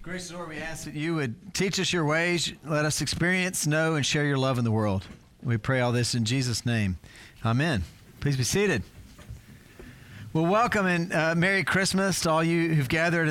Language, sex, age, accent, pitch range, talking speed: English, male, 40-59, American, 120-160 Hz, 200 wpm